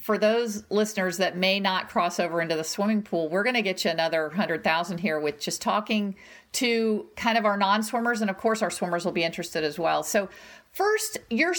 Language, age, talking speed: English, 50-69, 210 wpm